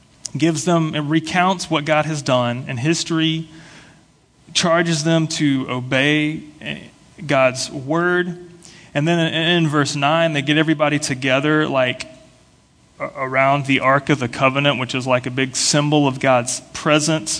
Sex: male